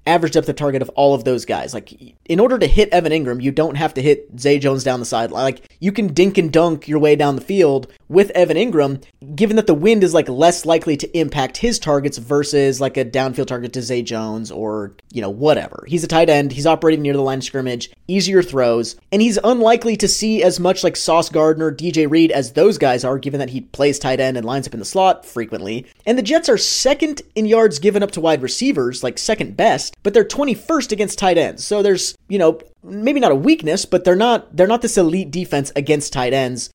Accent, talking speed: American, 235 wpm